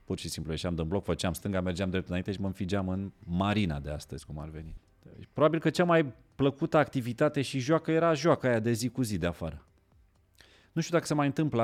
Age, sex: 30-49, male